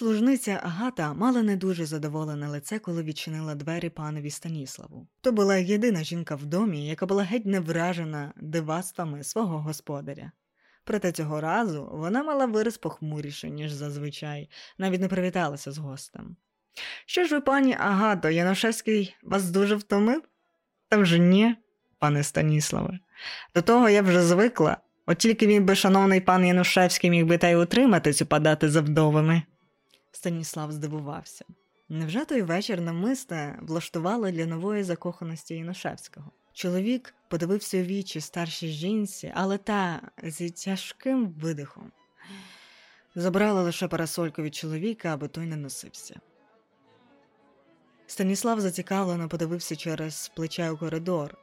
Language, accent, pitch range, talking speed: Ukrainian, native, 160-200 Hz, 130 wpm